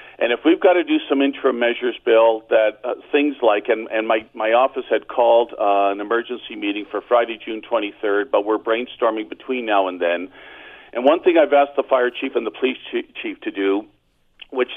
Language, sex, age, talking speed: English, male, 50-69, 205 wpm